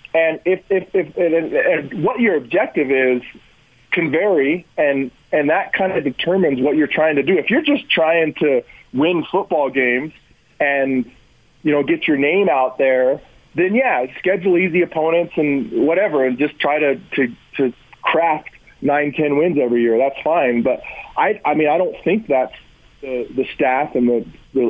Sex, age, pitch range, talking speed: male, 40-59, 130-185 Hz, 180 wpm